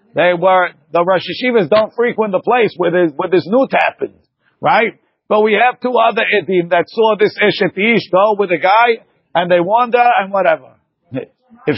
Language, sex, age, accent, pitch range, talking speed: English, male, 50-69, American, 180-230 Hz, 185 wpm